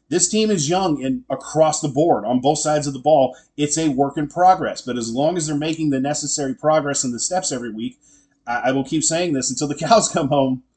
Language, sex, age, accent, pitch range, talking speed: English, male, 30-49, American, 130-175 Hz, 245 wpm